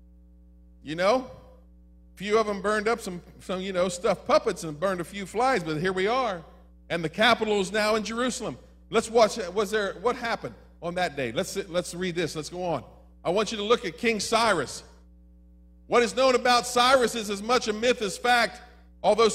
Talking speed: 210 wpm